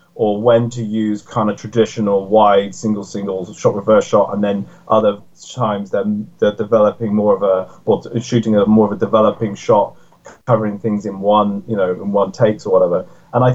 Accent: British